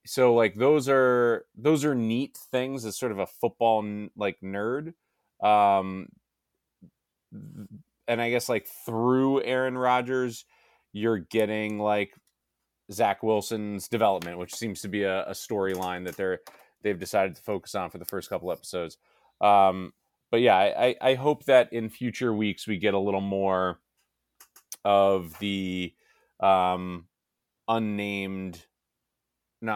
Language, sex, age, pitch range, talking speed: English, male, 30-49, 95-115 Hz, 135 wpm